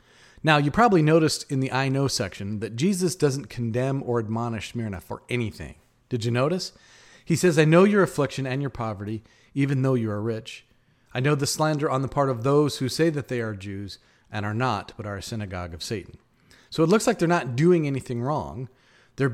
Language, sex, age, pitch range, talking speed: English, male, 40-59, 110-145 Hz, 215 wpm